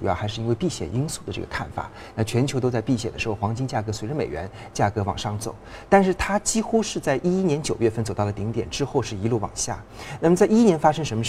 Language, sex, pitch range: Chinese, male, 105-135 Hz